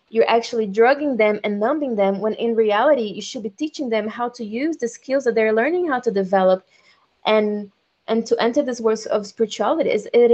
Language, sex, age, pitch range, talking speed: English, female, 20-39, 195-235 Hz, 205 wpm